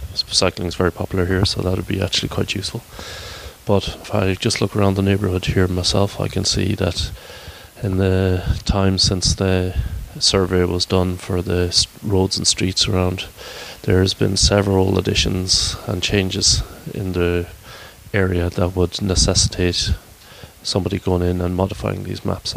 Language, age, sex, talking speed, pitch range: English, 30-49, male, 155 wpm, 90-100 Hz